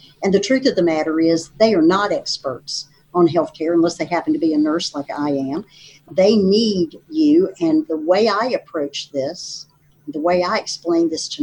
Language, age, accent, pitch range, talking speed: English, 50-69, American, 160-230 Hz, 200 wpm